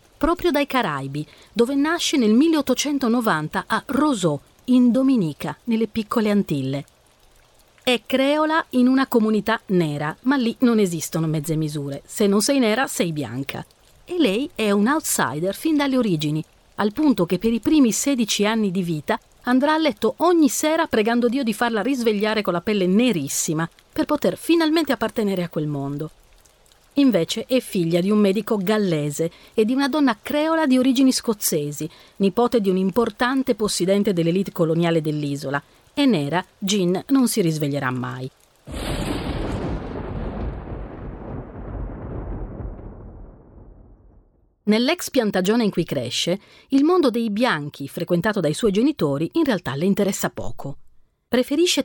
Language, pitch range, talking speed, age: Italian, 170-260 Hz, 140 wpm, 40-59